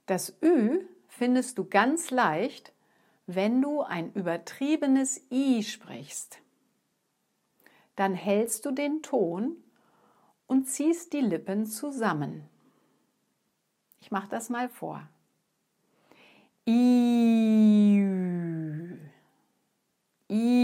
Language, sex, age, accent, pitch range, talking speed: English, female, 50-69, German, 185-255 Hz, 85 wpm